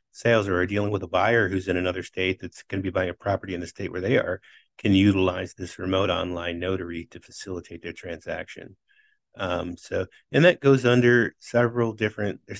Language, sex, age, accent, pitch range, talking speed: English, male, 30-49, American, 90-105 Hz, 205 wpm